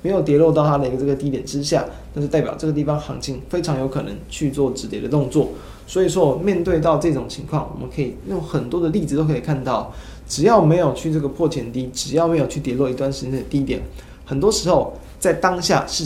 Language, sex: Chinese, male